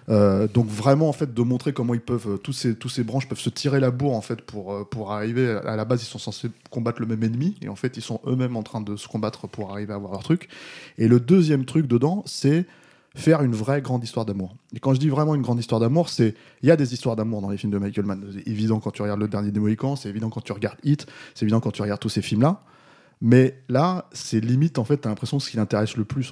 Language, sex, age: French, male, 20-39